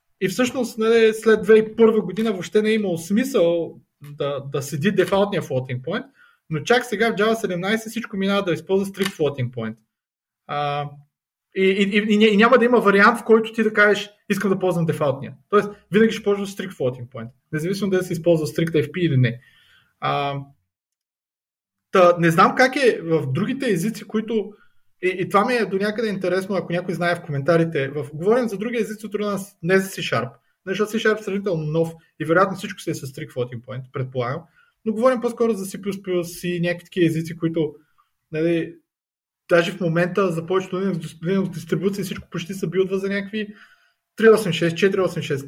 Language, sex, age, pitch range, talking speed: Bulgarian, male, 20-39, 160-210 Hz, 170 wpm